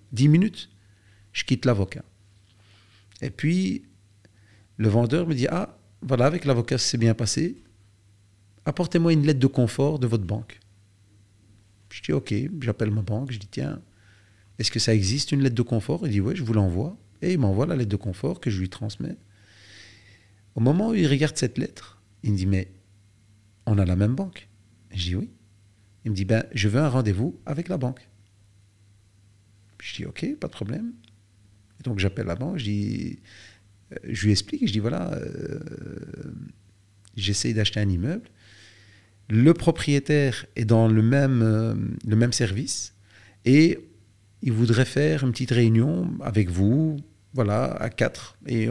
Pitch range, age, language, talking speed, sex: 100-130 Hz, 40-59, French, 180 wpm, male